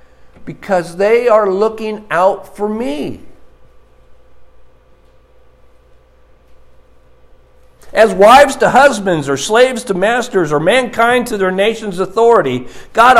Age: 50-69